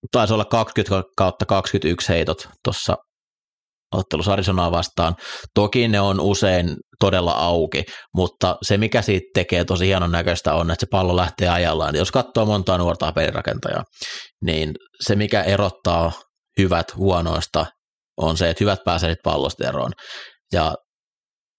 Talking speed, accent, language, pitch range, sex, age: 130 wpm, native, Finnish, 85-100 Hz, male, 30-49